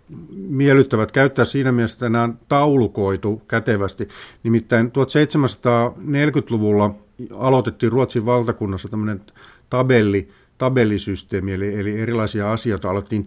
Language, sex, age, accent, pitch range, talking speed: Finnish, male, 50-69, native, 105-130 Hz, 95 wpm